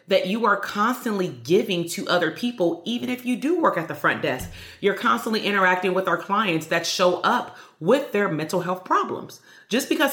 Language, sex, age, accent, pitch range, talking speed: English, female, 30-49, American, 175-240 Hz, 195 wpm